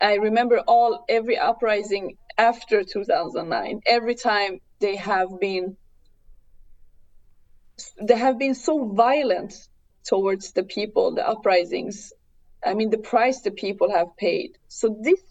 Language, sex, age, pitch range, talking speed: English, female, 20-39, 195-240 Hz, 125 wpm